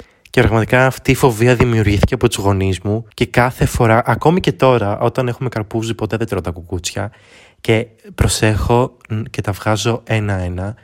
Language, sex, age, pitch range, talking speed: Greek, male, 20-39, 100-125 Hz, 165 wpm